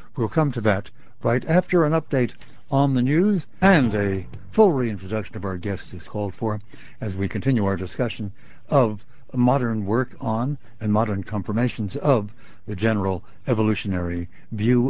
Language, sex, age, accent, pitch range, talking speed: English, male, 60-79, American, 110-140 Hz, 155 wpm